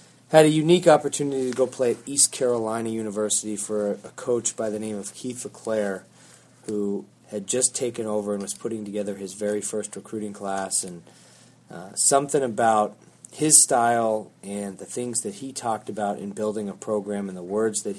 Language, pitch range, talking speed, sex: English, 100-115 Hz, 185 wpm, male